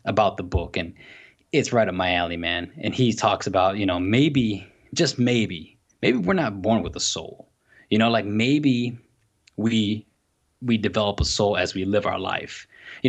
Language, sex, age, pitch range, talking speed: English, male, 20-39, 100-125 Hz, 190 wpm